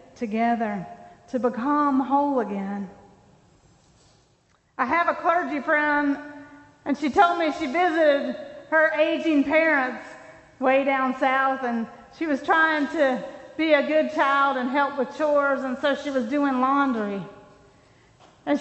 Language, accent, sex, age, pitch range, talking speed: English, American, female, 40-59, 250-300 Hz, 135 wpm